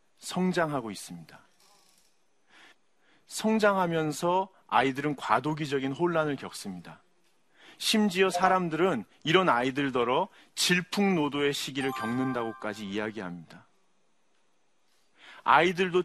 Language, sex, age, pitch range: Korean, male, 40-59, 130-180 Hz